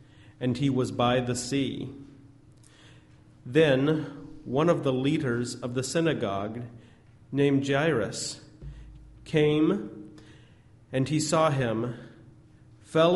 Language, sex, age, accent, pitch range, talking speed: English, male, 50-69, American, 115-145 Hz, 100 wpm